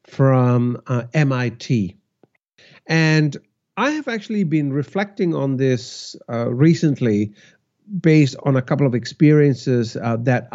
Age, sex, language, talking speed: 50-69, male, English, 120 wpm